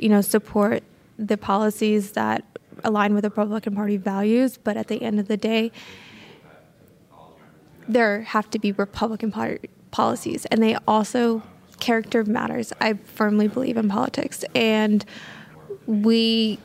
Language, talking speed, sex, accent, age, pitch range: English, 135 wpm, female, American, 20-39, 210-225 Hz